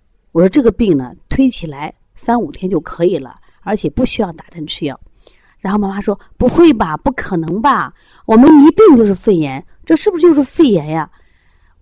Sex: female